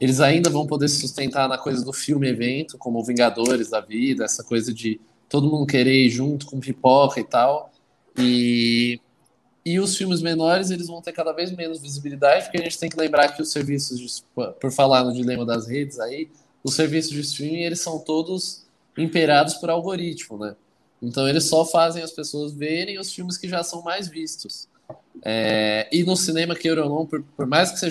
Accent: Brazilian